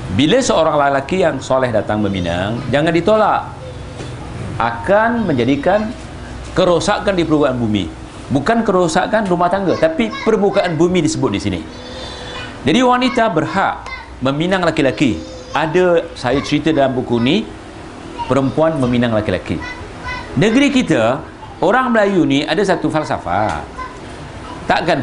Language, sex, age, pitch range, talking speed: Malay, male, 50-69, 125-185 Hz, 115 wpm